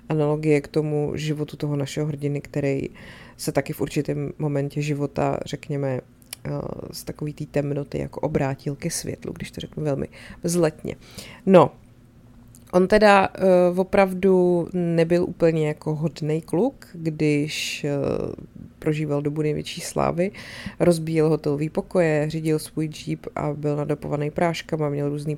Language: Czech